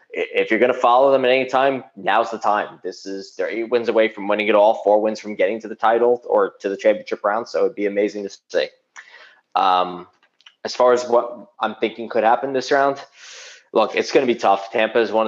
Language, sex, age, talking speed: English, male, 20-39, 240 wpm